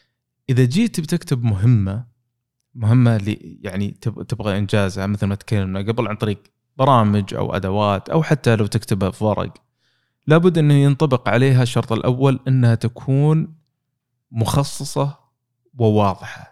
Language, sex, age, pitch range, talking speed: Arabic, male, 20-39, 110-130 Hz, 125 wpm